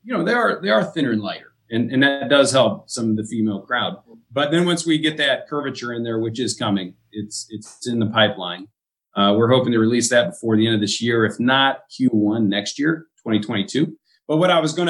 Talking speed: 240 wpm